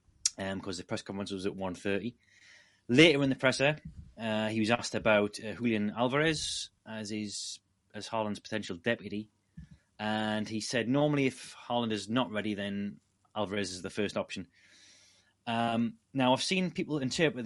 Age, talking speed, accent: 30-49, 160 wpm, British